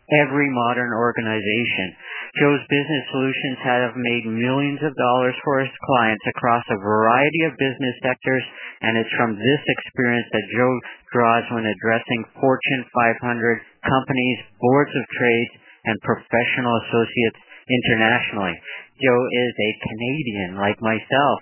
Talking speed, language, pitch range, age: 130 wpm, English, 115-135 Hz, 50-69